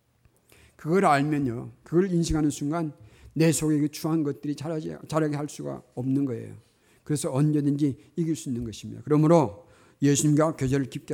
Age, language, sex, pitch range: 50-69, Korean, male, 130-175 Hz